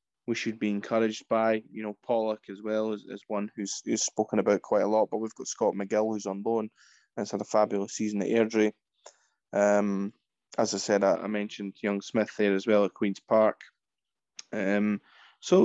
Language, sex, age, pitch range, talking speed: English, male, 20-39, 105-115 Hz, 200 wpm